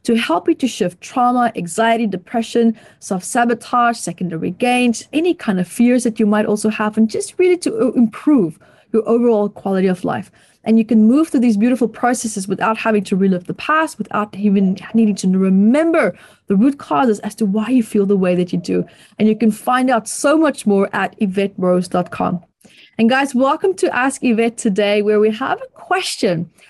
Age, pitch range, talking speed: 30-49, 200-250 Hz, 190 wpm